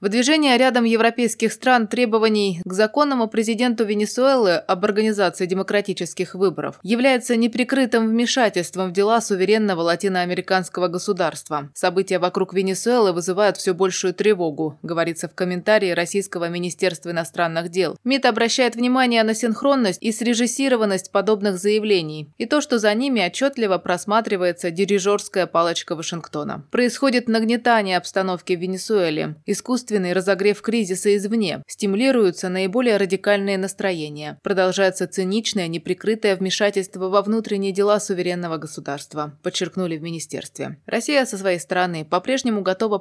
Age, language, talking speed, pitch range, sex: 20-39, Russian, 120 wpm, 180-220 Hz, female